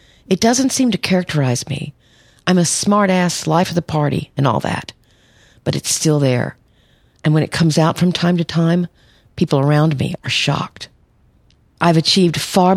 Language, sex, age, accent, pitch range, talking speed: English, female, 50-69, American, 140-175 Hz, 175 wpm